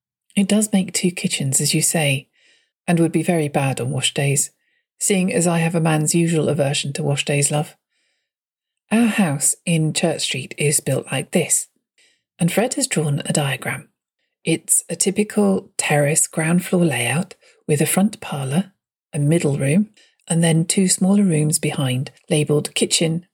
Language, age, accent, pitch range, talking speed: English, 40-59, British, 155-195 Hz, 165 wpm